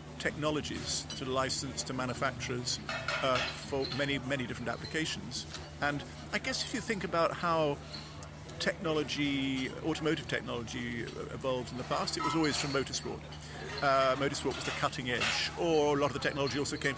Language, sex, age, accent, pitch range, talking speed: English, male, 50-69, British, 130-160 Hz, 160 wpm